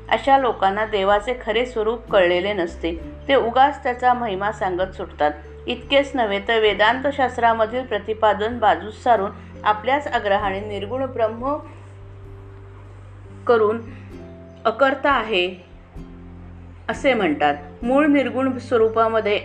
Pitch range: 180-255 Hz